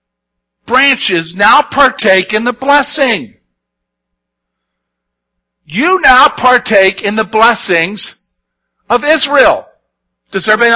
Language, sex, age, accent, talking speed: English, male, 50-69, American, 90 wpm